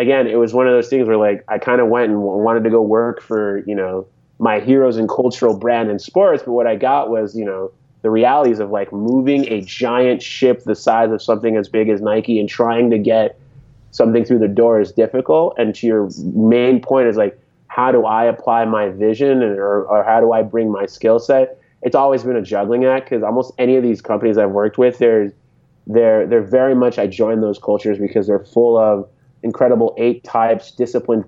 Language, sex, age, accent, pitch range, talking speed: English, male, 20-39, American, 105-125 Hz, 225 wpm